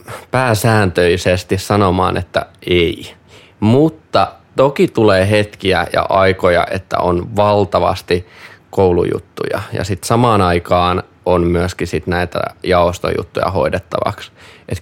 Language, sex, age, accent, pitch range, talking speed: Finnish, male, 20-39, native, 90-105 Hz, 100 wpm